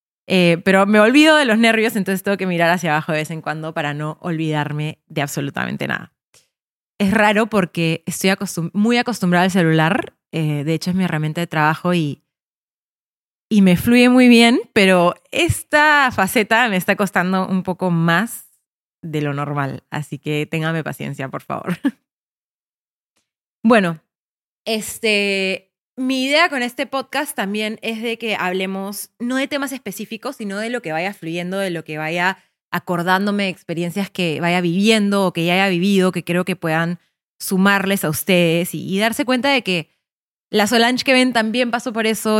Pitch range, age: 165-225 Hz, 20-39